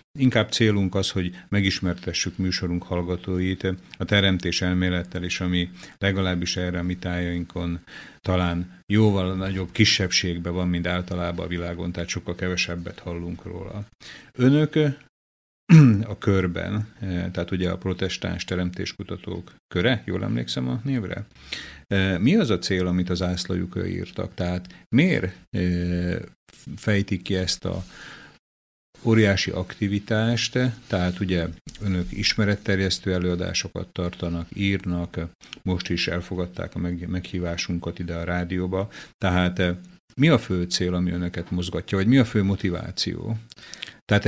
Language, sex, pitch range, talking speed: Slovak, male, 90-105 Hz, 120 wpm